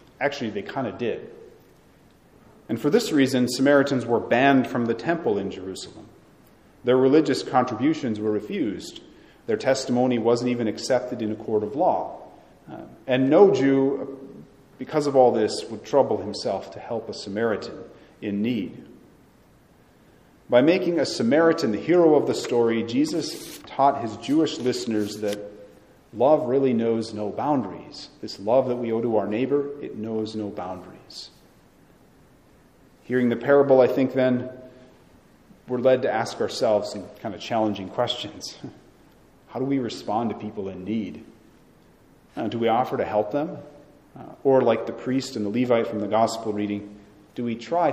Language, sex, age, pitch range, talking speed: English, male, 40-59, 105-135 Hz, 155 wpm